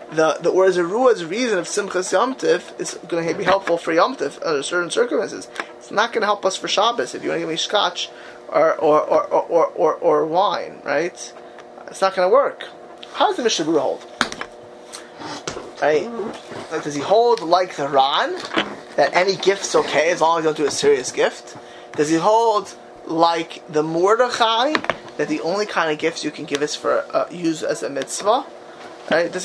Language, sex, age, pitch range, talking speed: English, male, 20-39, 160-225 Hz, 190 wpm